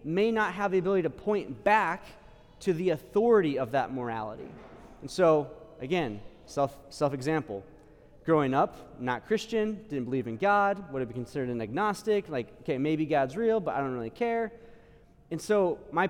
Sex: male